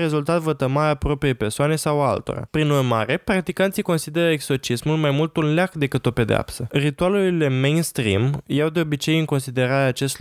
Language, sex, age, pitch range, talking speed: Romanian, male, 20-39, 125-175 Hz, 155 wpm